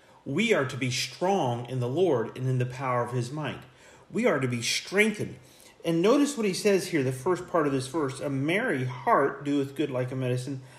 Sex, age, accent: male, 40-59, American